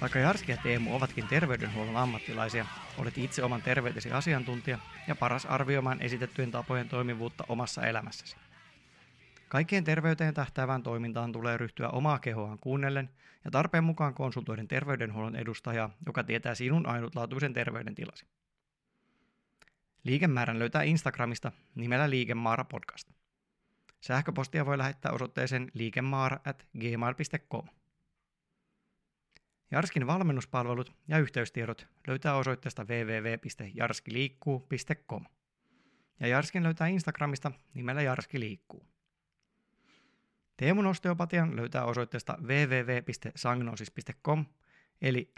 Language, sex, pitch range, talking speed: Finnish, male, 120-150 Hz, 95 wpm